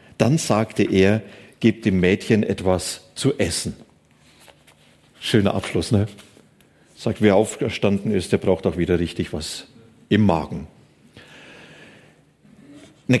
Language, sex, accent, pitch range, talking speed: German, male, German, 105-130 Hz, 115 wpm